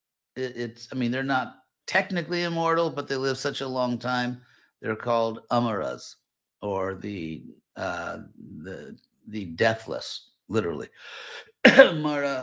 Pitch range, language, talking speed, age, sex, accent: 110-135 Hz, English, 120 wpm, 50-69, male, American